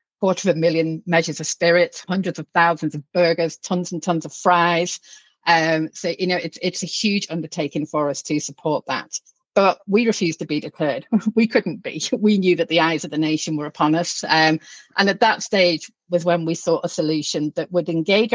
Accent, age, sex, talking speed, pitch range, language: British, 40-59, female, 215 wpm, 155-190 Hz, English